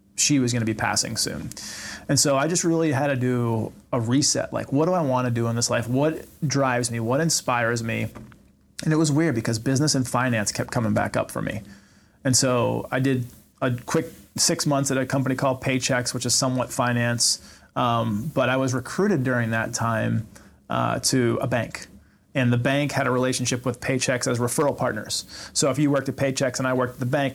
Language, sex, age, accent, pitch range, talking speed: English, male, 30-49, American, 115-135 Hz, 215 wpm